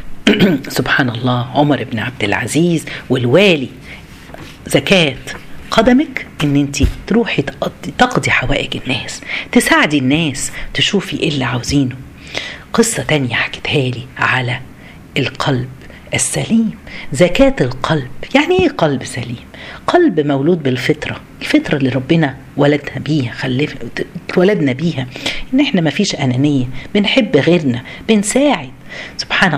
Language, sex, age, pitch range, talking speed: Arabic, female, 50-69, 135-205 Hz, 110 wpm